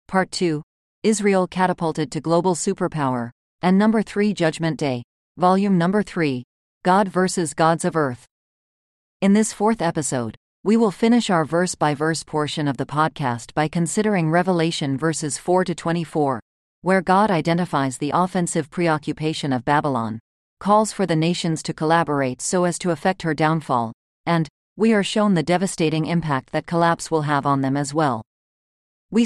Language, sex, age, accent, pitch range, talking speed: English, female, 40-59, American, 150-185 Hz, 150 wpm